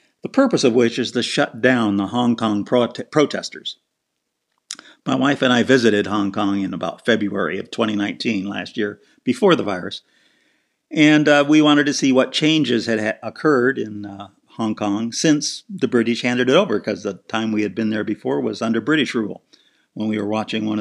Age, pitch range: 50-69, 110-140 Hz